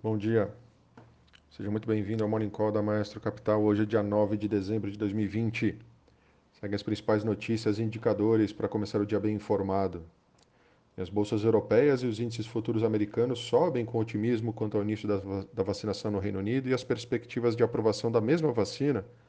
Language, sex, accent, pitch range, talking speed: Portuguese, male, Brazilian, 105-115 Hz, 180 wpm